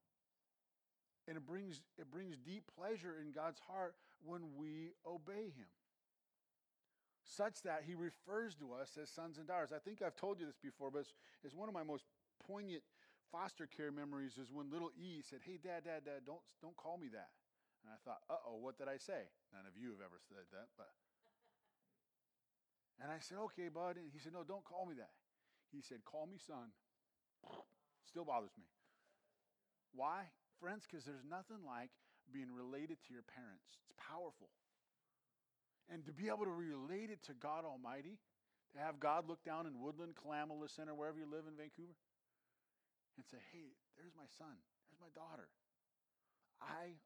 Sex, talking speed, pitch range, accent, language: male, 180 wpm, 140-175 Hz, American, English